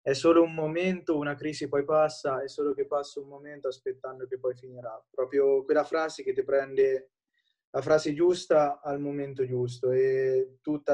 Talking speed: 175 wpm